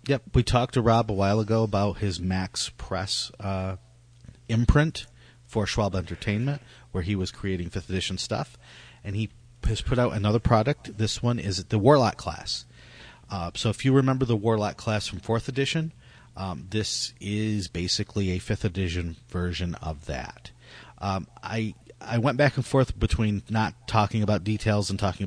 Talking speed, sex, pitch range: 170 wpm, male, 95-120 Hz